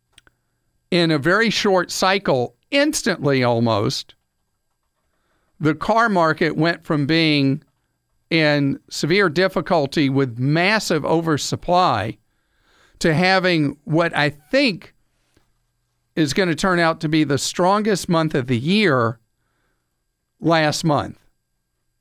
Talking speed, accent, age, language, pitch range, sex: 105 wpm, American, 50-69, English, 135-180 Hz, male